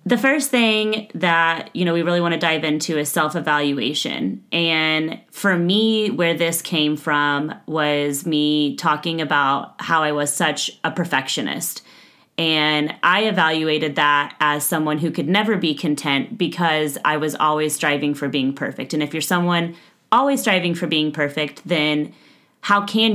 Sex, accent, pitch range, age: female, American, 150-175 Hz, 30-49